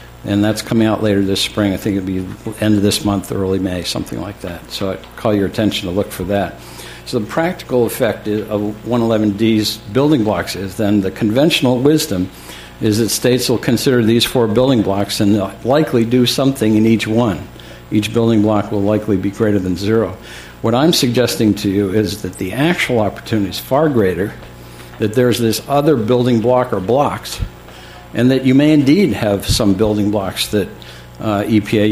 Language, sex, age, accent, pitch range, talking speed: English, male, 60-79, American, 95-115 Hz, 190 wpm